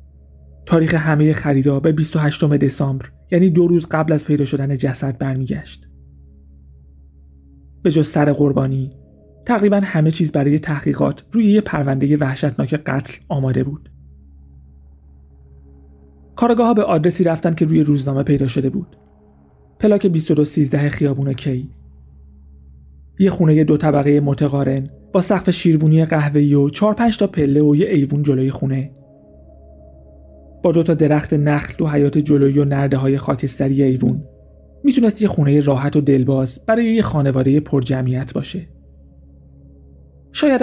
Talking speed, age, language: 135 wpm, 30-49, Persian